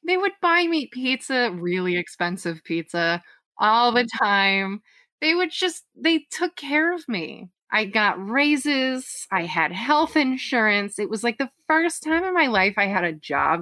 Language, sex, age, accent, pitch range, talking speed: English, female, 20-39, American, 170-225 Hz, 170 wpm